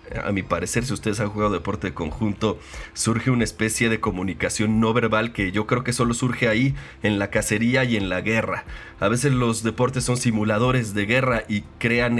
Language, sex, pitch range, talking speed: Spanish, male, 105-125 Hz, 200 wpm